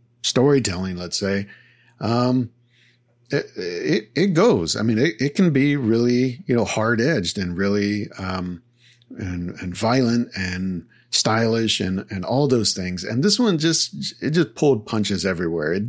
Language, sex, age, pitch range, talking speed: English, male, 50-69, 100-120 Hz, 160 wpm